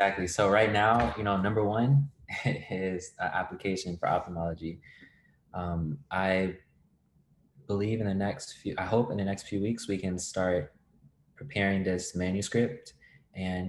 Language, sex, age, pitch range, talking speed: English, male, 20-39, 90-100 Hz, 150 wpm